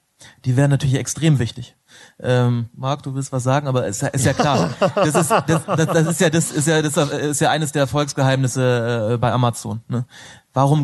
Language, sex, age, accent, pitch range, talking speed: German, male, 30-49, German, 130-145 Hz, 205 wpm